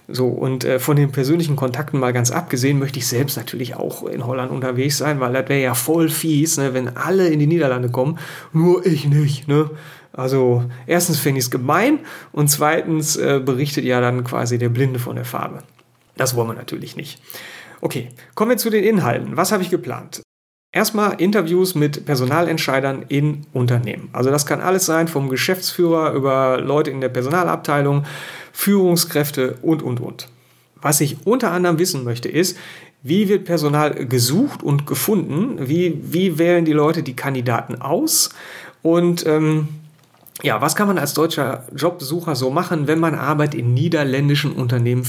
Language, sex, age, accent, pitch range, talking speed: English, male, 40-59, German, 130-165 Hz, 170 wpm